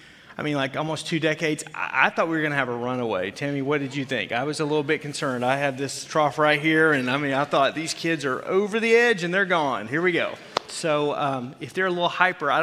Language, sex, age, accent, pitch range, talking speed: English, male, 30-49, American, 135-160 Hz, 270 wpm